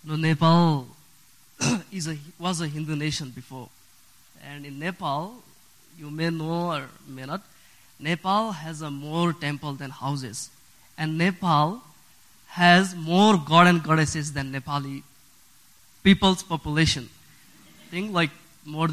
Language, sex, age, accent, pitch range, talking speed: English, male, 20-39, Indian, 145-180 Hz, 120 wpm